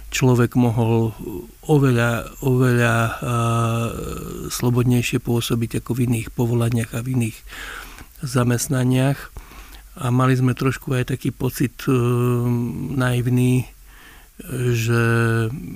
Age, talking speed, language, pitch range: 60-79, 90 wpm, Slovak, 120-135 Hz